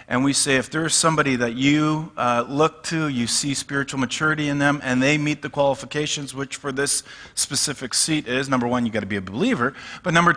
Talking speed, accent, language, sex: 220 wpm, American, English, male